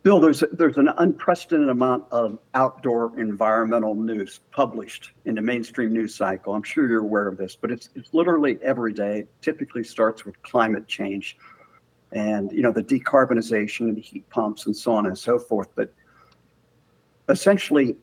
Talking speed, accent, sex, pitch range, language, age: 170 wpm, American, male, 110-140 Hz, English, 60-79